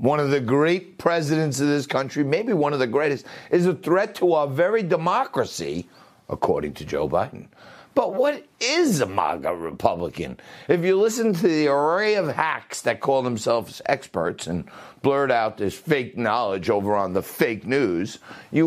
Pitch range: 135-195 Hz